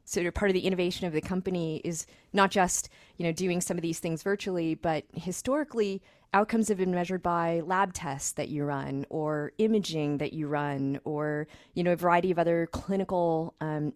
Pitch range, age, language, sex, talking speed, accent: 155-190 Hz, 30-49, English, female, 195 wpm, American